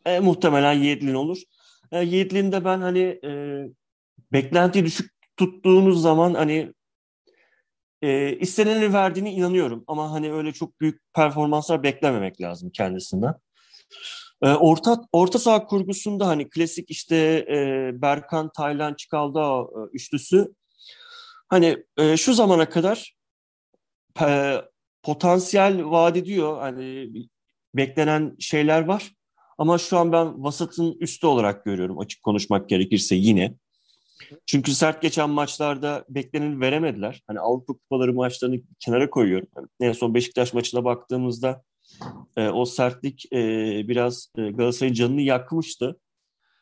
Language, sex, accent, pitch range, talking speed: Turkish, male, native, 130-175 Hz, 120 wpm